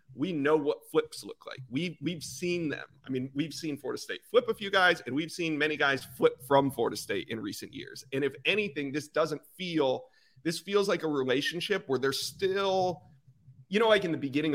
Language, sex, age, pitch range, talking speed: English, male, 30-49, 135-180 Hz, 215 wpm